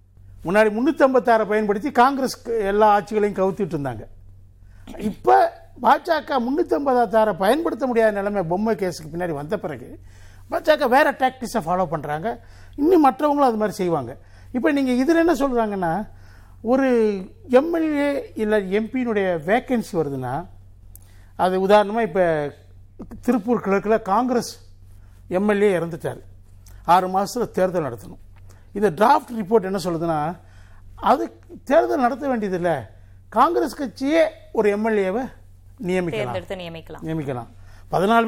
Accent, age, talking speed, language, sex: native, 50-69, 110 wpm, Tamil, male